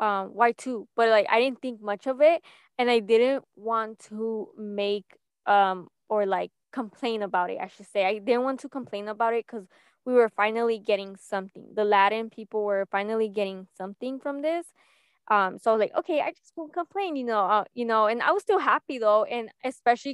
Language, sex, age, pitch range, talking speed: English, female, 20-39, 200-245 Hz, 210 wpm